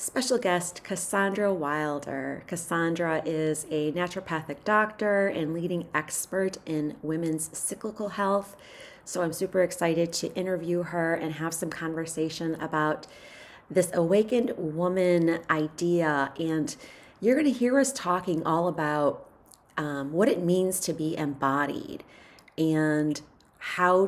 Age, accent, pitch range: 30-49, American, 155-185 Hz